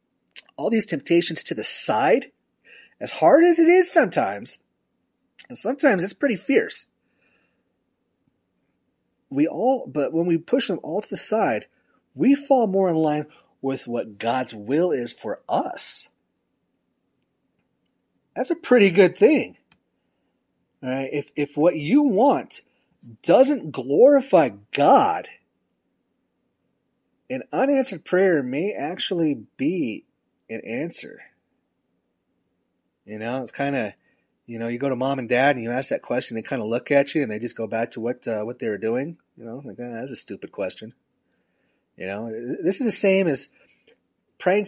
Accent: American